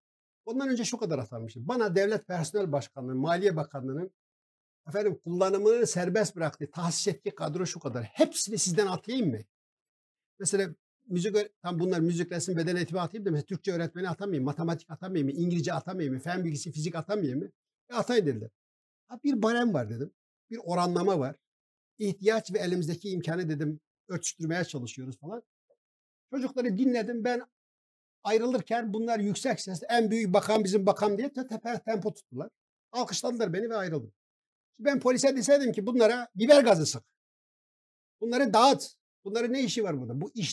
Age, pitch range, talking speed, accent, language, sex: 60-79, 150-220 Hz, 150 wpm, native, Turkish, male